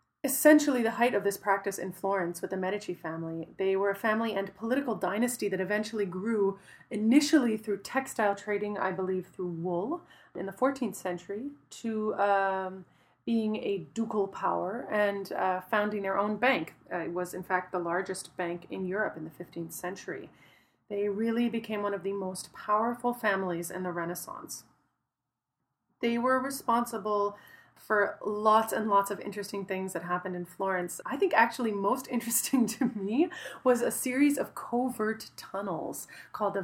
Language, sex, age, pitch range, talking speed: English, female, 30-49, 185-230 Hz, 165 wpm